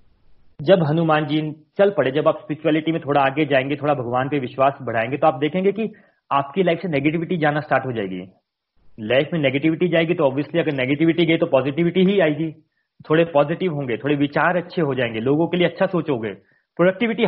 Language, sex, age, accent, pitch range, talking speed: Hindi, male, 40-59, native, 140-175 Hz, 195 wpm